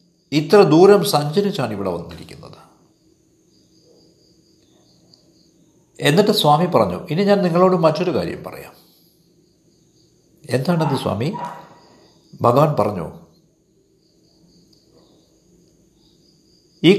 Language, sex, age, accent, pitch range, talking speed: Malayalam, male, 60-79, native, 155-175 Hz, 65 wpm